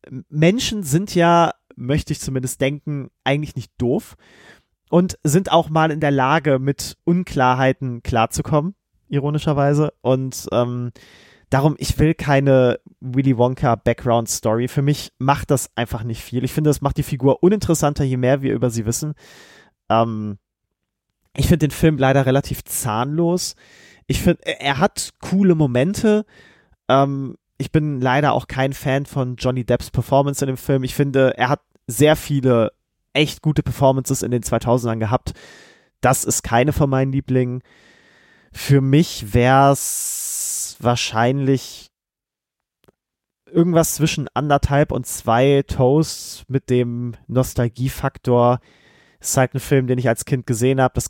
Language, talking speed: German, 145 wpm